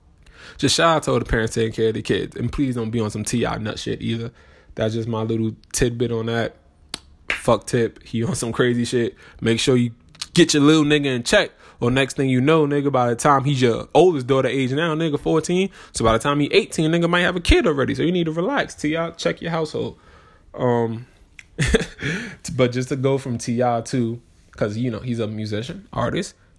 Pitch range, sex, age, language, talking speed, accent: 110-145 Hz, male, 20-39, English, 220 wpm, American